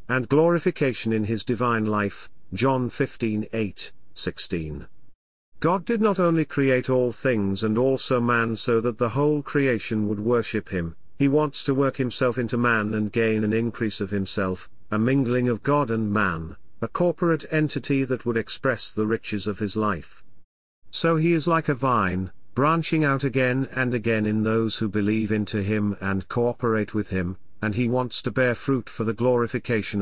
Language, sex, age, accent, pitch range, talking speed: English, male, 50-69, British, 105-140 Hz, 175 wpm